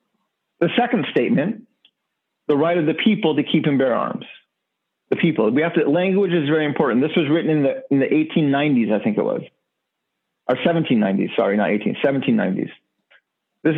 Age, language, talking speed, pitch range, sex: 40-59, English, 180 wpm, 135-200 Hz, male